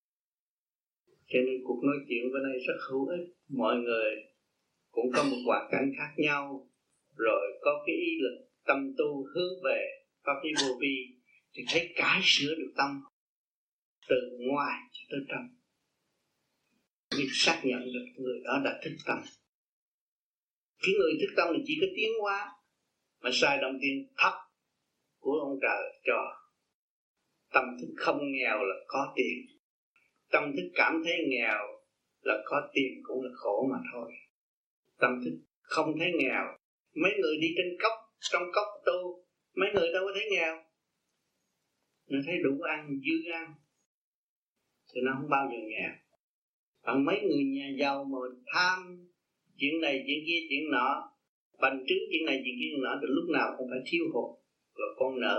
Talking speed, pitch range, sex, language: 165 wpm, 135-190 Hz, male, Vietnamese